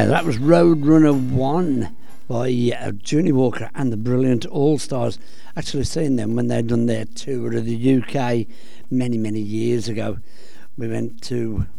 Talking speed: 165 wpm